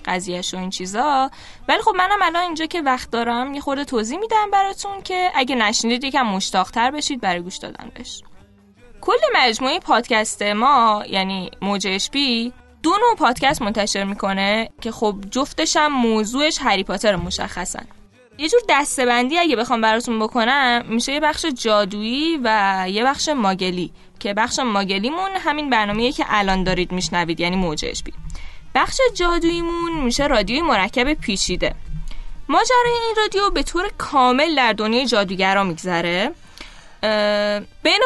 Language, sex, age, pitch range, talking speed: Persian, female, 10-29, 200-300 Hz, 140 wpm